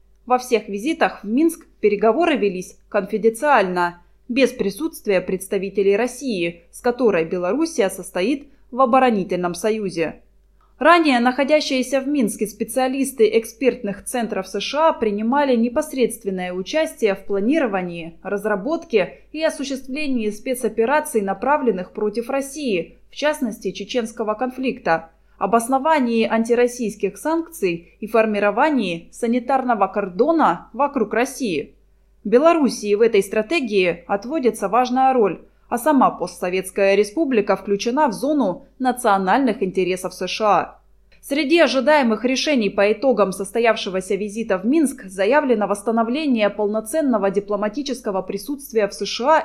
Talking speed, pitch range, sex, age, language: 105 wpm, 200-270 Hz, female, 20-39, Russian